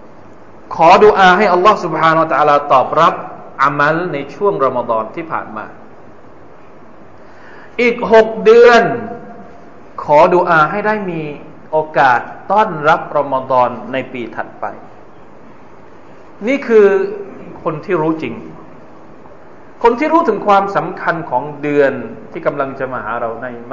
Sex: male